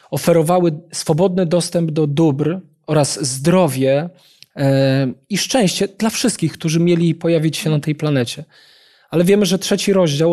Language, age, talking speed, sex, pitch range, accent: Polish, 20-39, 135 wpm, male, 145-185 Hz, native